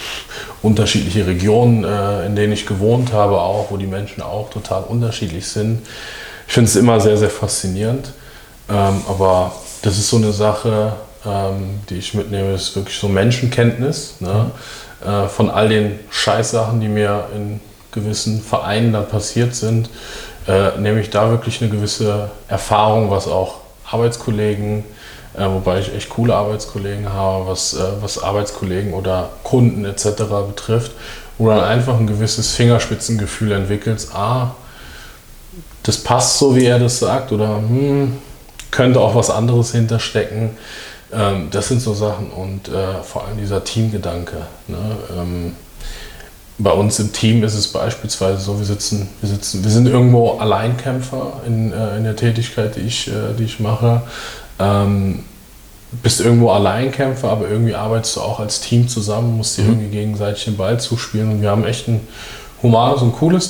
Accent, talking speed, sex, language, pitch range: German, 155 wpm, male, German, 100-115 Hz